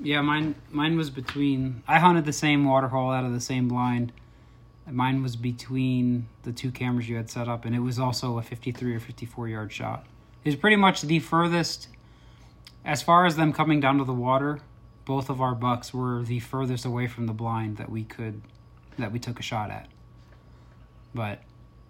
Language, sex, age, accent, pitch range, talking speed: English, male, 20-39, American, 120-140 Hz, 195 wpm